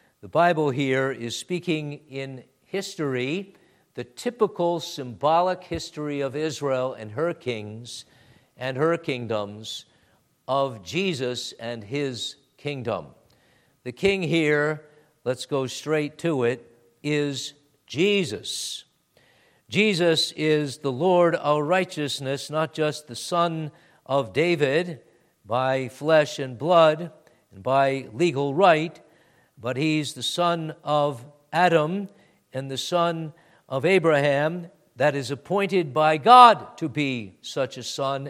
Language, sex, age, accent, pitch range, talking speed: English, male, 50-69, American, 130-165 Hz, 120 wpm